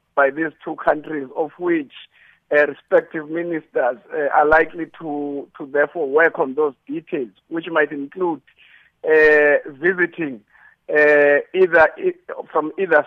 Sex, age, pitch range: male, 50-69, 150-175 Hz